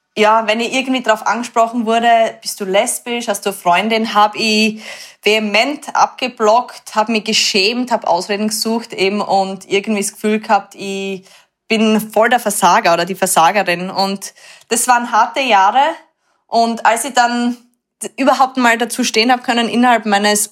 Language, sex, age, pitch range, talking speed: German, female, 20-39, 205-240 Hz, 160 wpm